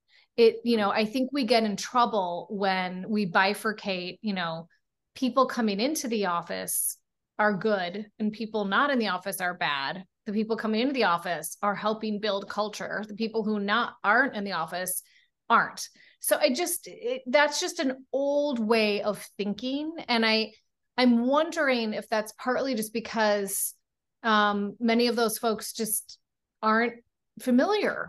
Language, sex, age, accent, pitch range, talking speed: English, female, 30-49, American, 205-260 Hz, 160 wpm